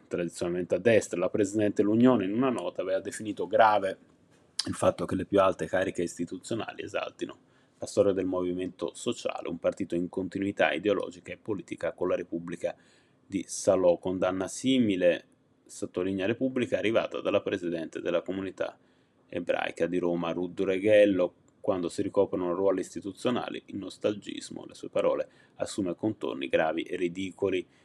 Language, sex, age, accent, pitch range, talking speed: Italian, male, 30-49, native, 90-120 Hz, 145 wpm